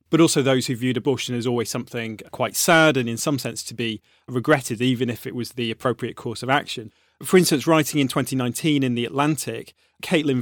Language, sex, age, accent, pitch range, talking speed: English, male, 30-49, British, 120-140 Hz, 205 wpm